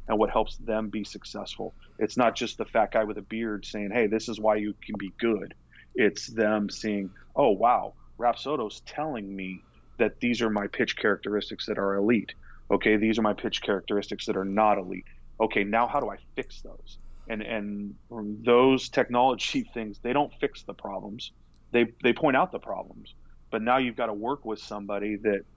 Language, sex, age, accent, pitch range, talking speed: English, male, 30-49, American, 100-110 Hz, 195 wpm